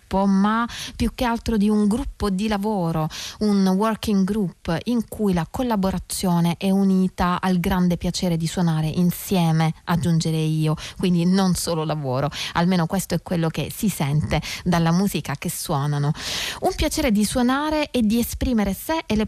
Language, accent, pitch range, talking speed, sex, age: Italian, native, 180-210 Hz, 160 wpm, female, 30-49